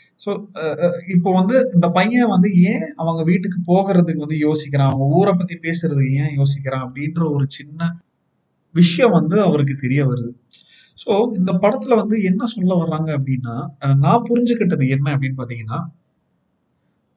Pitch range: 140-190 Hz